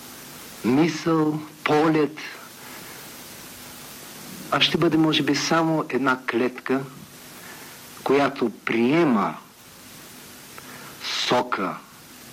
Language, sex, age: Bulgarian, male, 50-69